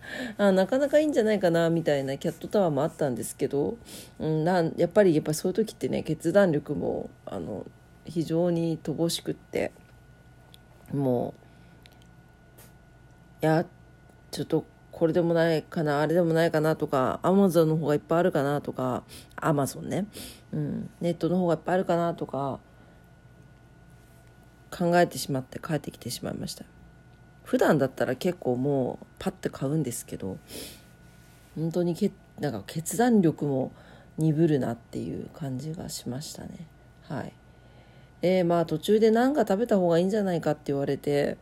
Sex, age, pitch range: female, 40-59, 140-185 Hz